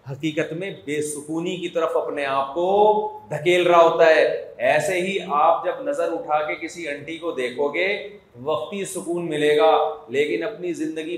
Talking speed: 170 wpm